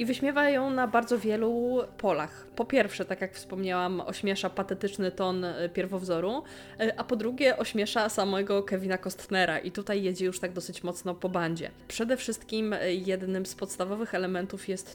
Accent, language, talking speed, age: native, Polish, 155 wpm, 20-39